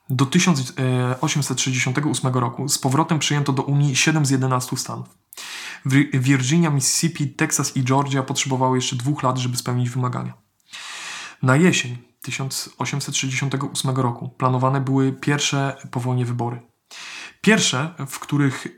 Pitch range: 125-145 Hz